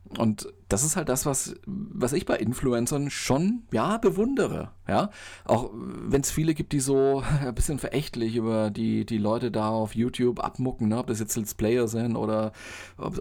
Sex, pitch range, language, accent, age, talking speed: male, 100-130 Hz, German, German, 40-59, 190 wpm